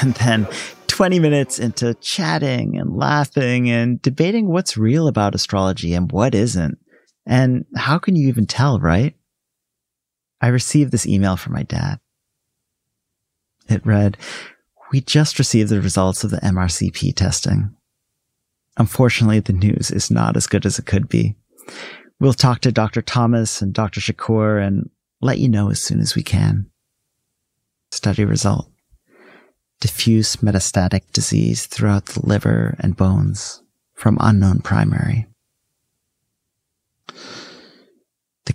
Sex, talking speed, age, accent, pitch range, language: male, 130 wpm, 40-59, American, 100-120 Hz, English